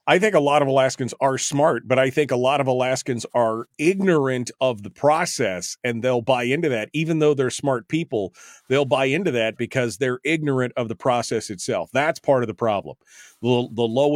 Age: 40-59